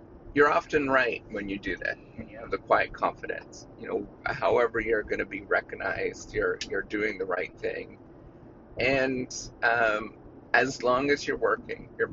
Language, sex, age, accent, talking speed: English, male, 30-49, American, 170 wpm